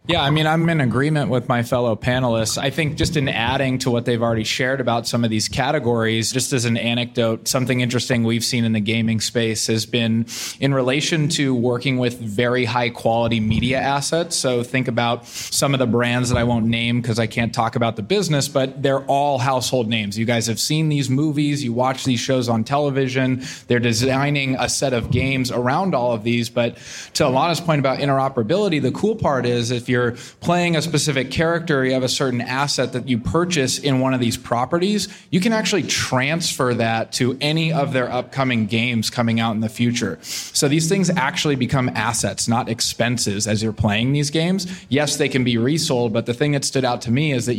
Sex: male